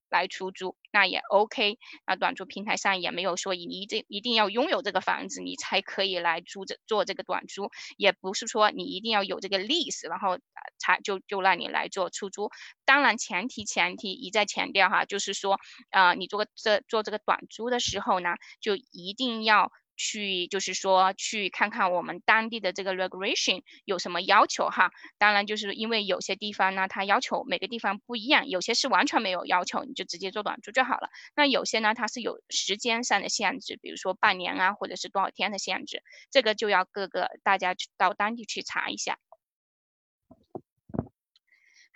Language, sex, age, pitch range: Chinese, female, 10-29, 195-245 Hz